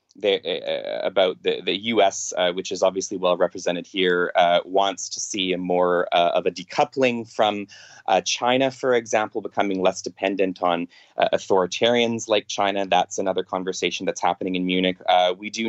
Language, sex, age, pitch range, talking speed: English, male, 20-39, 95-115 Hz, 175 wpm